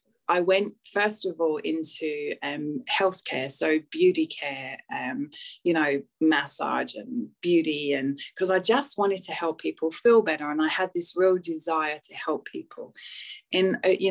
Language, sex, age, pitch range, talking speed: English, female, 20-39, 155-210 Hz, 160 wpm